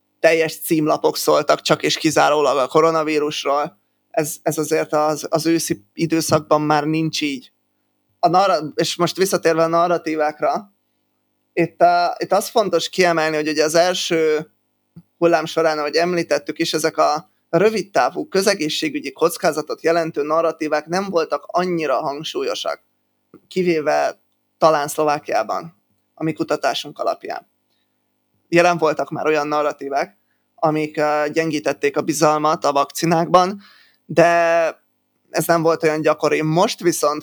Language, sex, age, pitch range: Hungarian, male, 20-39, 150-170 Hz